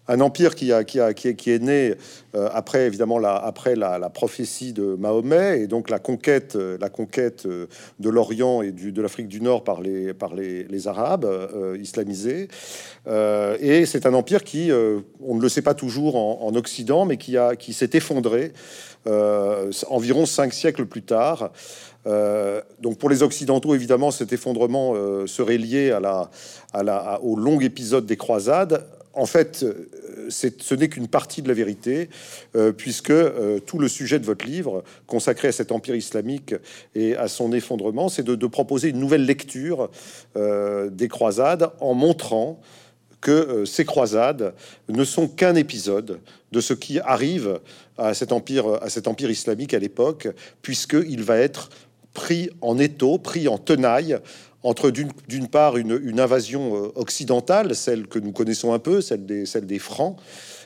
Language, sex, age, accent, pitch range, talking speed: French, male, 40-59, French, 110-140 Hz, 175 wpm